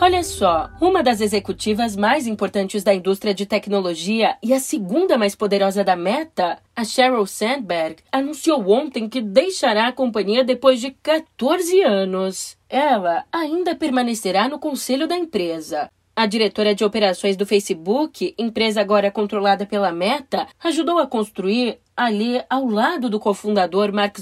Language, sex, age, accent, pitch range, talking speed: Portuguese, female, 30-49, Brazilian, 200-265 Hz, 145 wpm